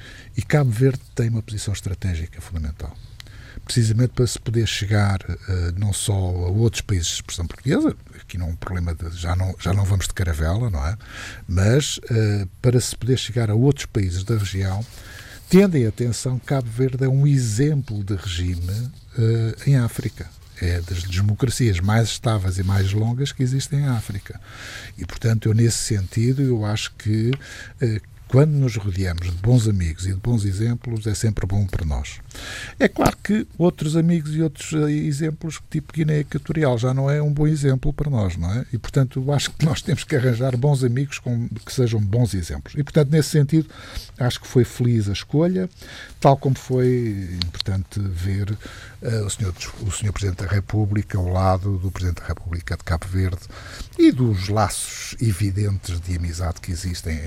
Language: Portuguese